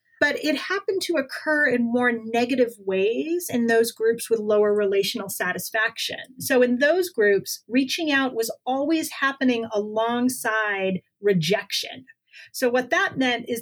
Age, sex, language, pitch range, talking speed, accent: 30-49, female, English, 215-275 Hz, 140 wpm, American